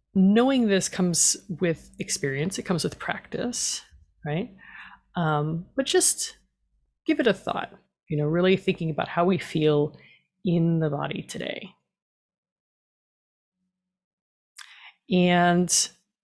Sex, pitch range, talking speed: female, 165-235 Hz, 110 wpm